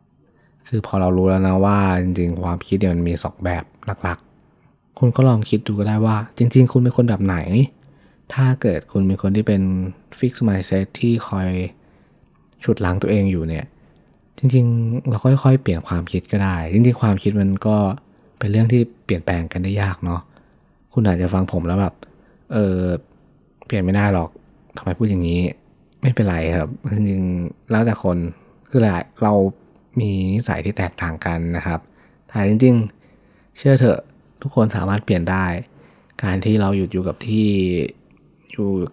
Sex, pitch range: male, 90-110 Hz